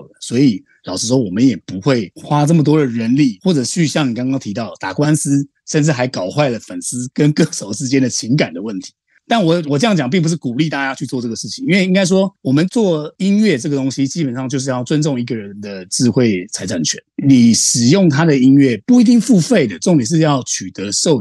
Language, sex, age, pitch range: Chinese, male, 30-49, 125-160 Hz